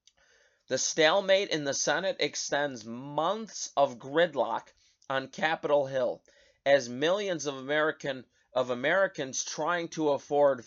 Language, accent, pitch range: English, American, 135-175 Hz